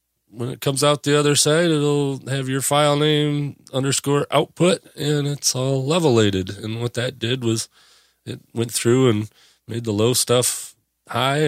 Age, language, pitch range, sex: 30-49, English, 110-135 Hz, male